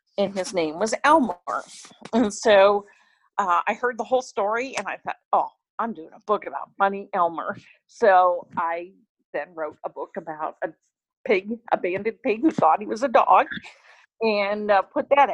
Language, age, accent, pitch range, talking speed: English, 50-69, American, 190-260 Hz, 180 wpm